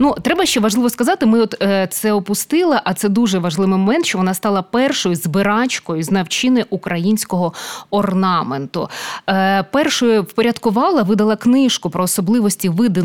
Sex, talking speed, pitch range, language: female, 145 wpm, 195-235 Hz, Ukrainian